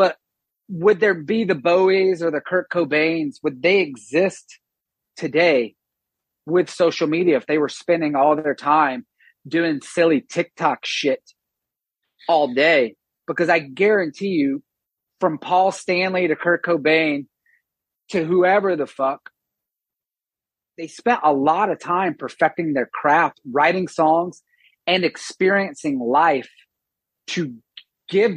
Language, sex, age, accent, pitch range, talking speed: English, male, 30-49, American, 155-190 Hz, 125 wpm